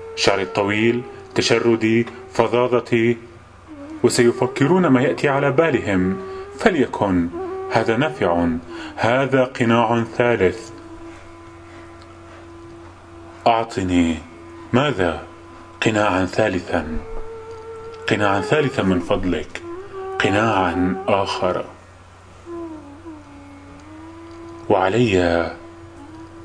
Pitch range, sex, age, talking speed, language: 90-125 Hz, male, 30-49, 60 wpm, Arabic